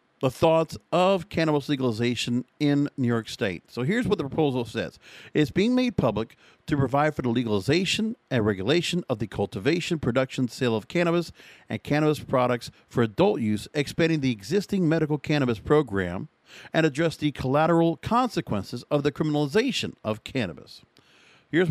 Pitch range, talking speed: 125-170 Hz, 155 wpm